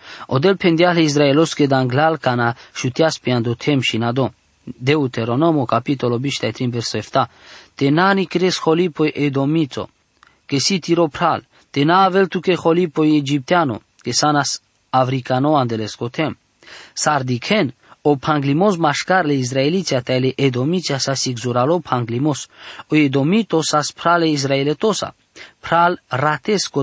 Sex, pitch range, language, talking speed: male, 125-160 Hz, English, 110 wpm